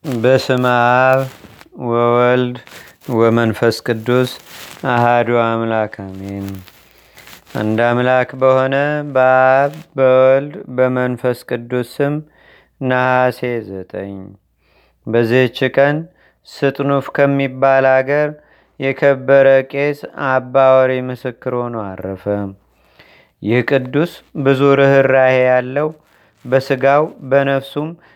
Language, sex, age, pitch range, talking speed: Amharic, male, 30-49, 120-140 Hz, 70 wpm